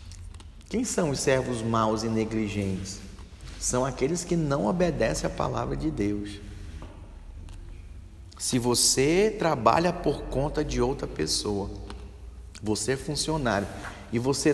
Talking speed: 120 wpm